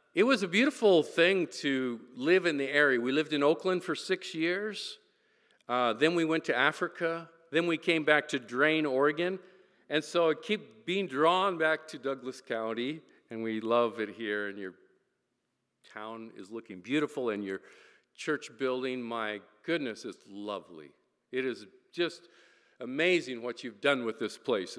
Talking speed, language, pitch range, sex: 165 wpm, English, 125-180 Hz, male